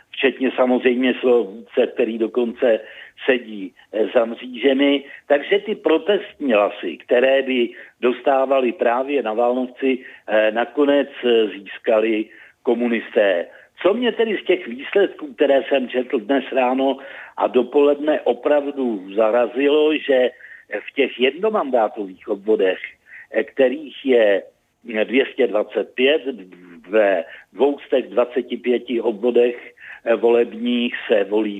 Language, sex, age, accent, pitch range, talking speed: Czech, male, 60-79, native, 120-145 Hz, 95 wpm